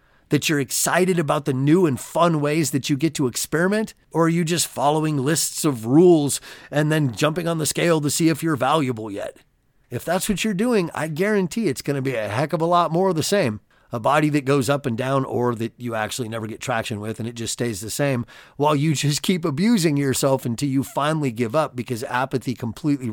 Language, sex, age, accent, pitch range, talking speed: English, male, 30-49, American, 125-170 Hz, 230 wpm